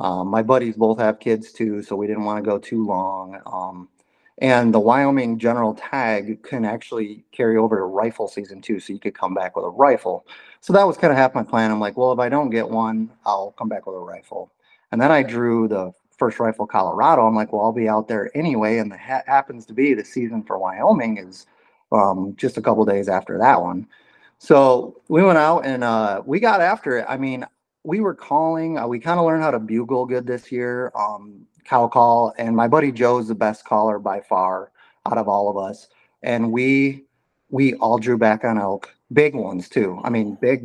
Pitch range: 110-125 Hz